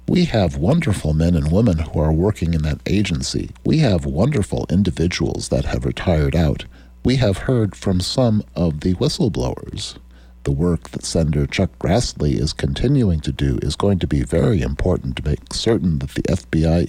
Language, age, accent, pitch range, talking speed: English, 60-79, American, 70-95 Hz, 180 wpm